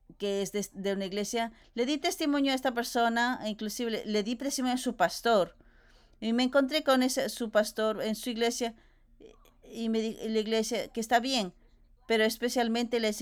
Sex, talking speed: female, 175 wpm